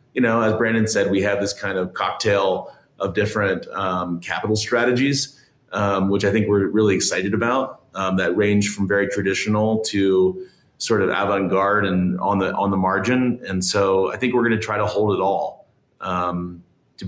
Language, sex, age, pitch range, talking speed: English, male, 30-49, 95-115 Hz, 190 wpm